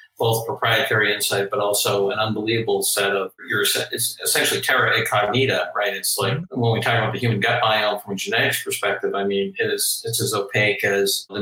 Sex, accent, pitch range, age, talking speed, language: male, American, 110-130 Hz, 50-69, 195 wpm, English